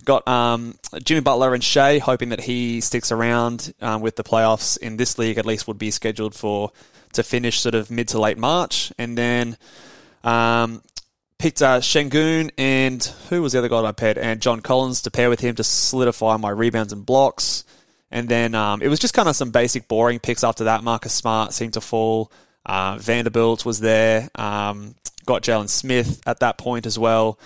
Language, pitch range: English, 110-125 Hz